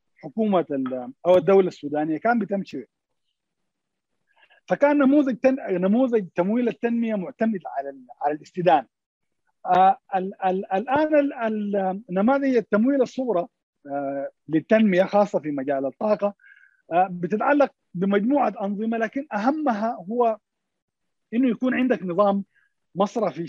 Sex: male